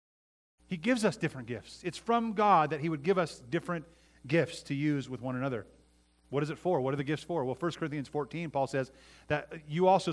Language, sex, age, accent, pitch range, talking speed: English, male, 30-49, American, 110-165 Hz, 225 wpm